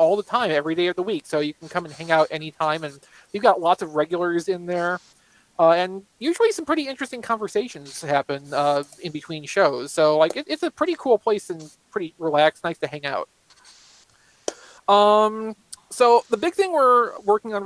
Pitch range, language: 155-200 Hz, English